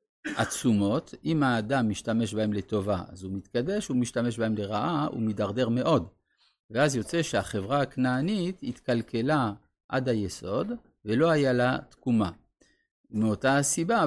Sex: male